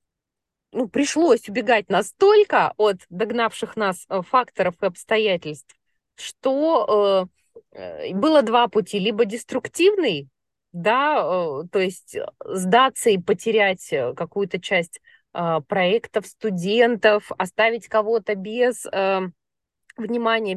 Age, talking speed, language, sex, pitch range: 20-39, 95 wpm, Russian, female, 195-255 Hz